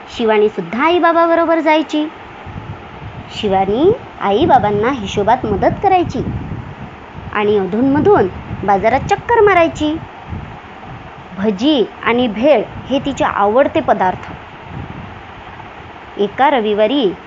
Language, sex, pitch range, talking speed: Marathi, male, 210-325 Hz, 80 wpm